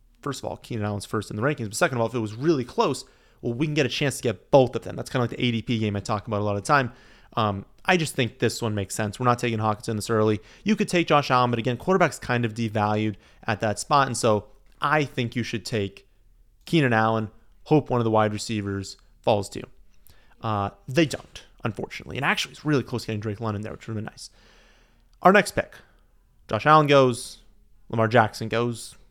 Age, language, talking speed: 30-49, English, 245 wpm